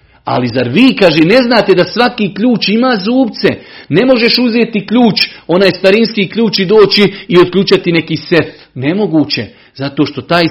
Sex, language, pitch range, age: male, Croatian, 150-205 Hz, 50-69